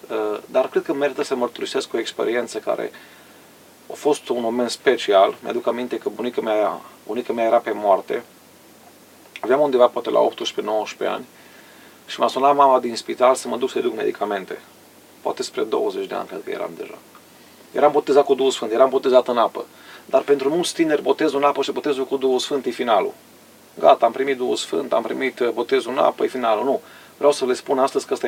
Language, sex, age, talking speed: Romanian, male, 30-49, 195 wpm